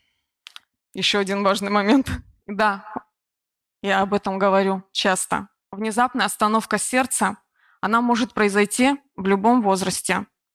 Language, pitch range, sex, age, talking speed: Russian, 200-245 Hz, female, 20-39, 110 wpm